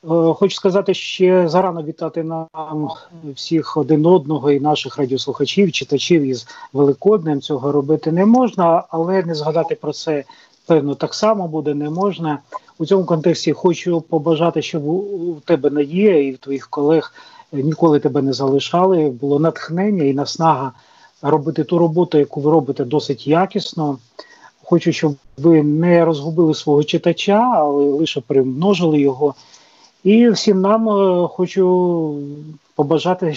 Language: Ukrainian